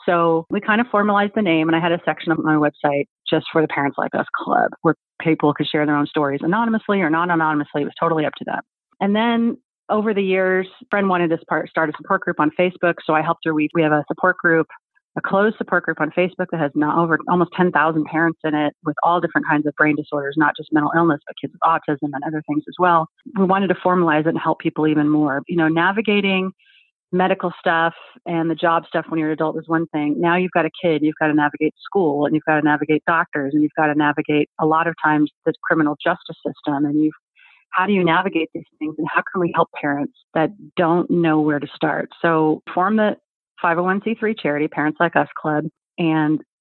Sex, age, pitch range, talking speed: female, 30-49, 150-185 Hz, 235 wpm